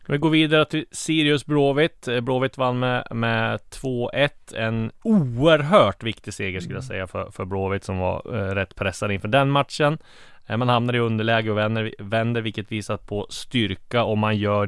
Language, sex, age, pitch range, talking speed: Swedish, male, 20-39, 95-120 Hz, 170 wpm